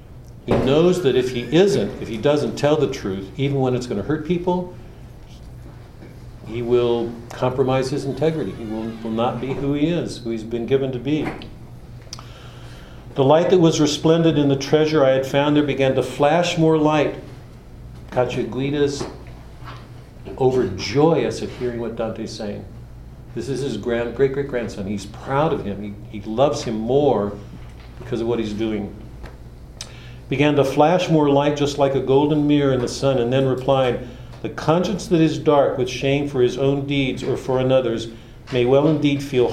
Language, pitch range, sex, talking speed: English, 120-145 Hz, male, 175 wpm